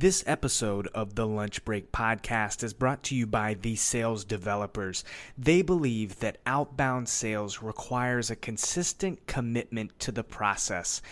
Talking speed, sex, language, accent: 145 wpm, male, English, American